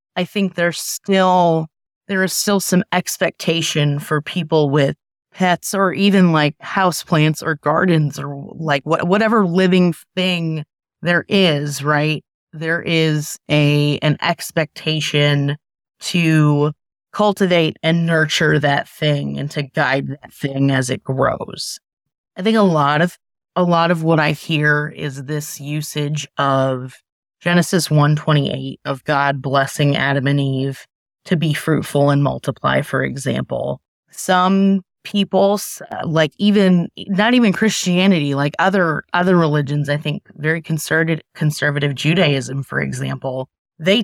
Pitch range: 145-180 Hz